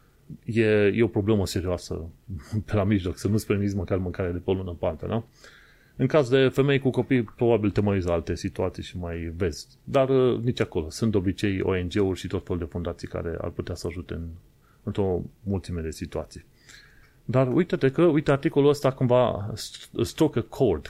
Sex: male